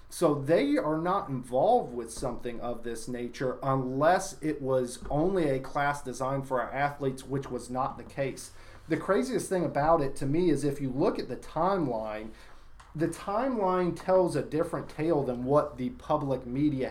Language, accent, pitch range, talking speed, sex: English, American, 130-165 Hz, 175 wpm, male